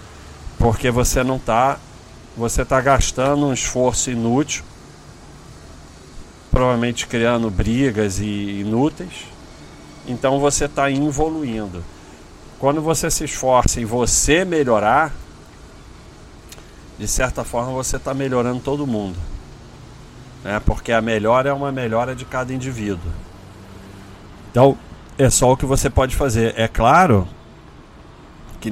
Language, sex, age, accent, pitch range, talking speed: Portuguese, male, 40-59, Brazilian, 105-135 Hz, 115 wpm